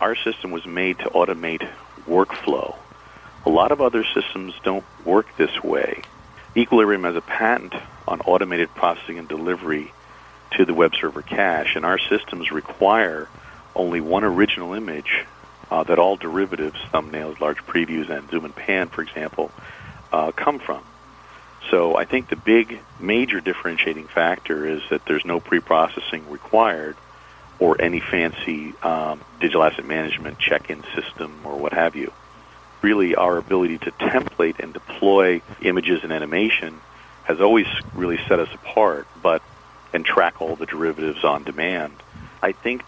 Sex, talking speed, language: male, 150 wpm, English